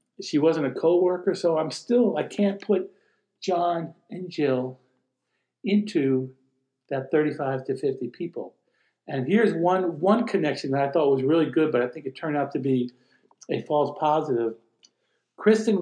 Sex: male